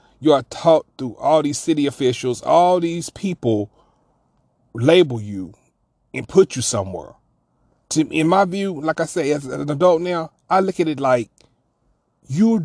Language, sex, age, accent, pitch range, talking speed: English, male, 30-49, American, 155-210 Hz, 155 wpm